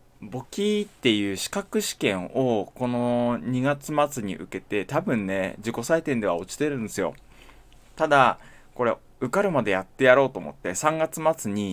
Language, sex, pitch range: Japanese, male, 105-155 Hz